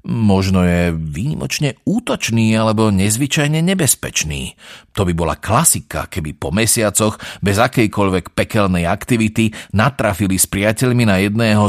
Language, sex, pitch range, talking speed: Slovak, male, 90-120 Hz, 120 wpm